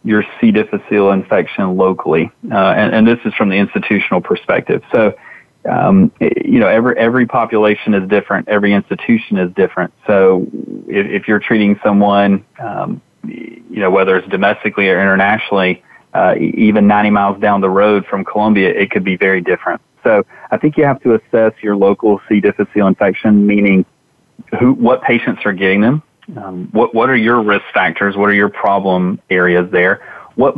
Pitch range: 95-110 Hz